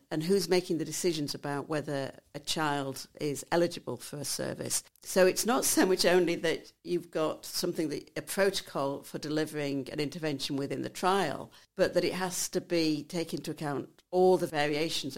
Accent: British